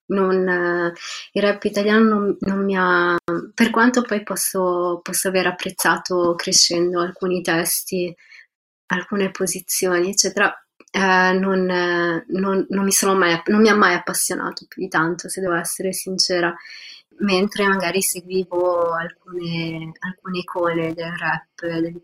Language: Italian